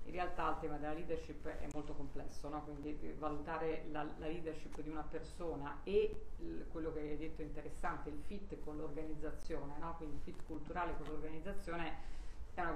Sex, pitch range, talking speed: female, 150-165 Hz, 180 wpm